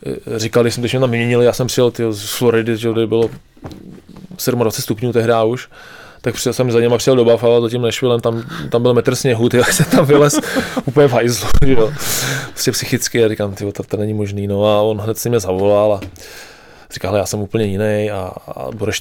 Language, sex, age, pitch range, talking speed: English, male, 20-39, 110-125 Hz, 205 wpm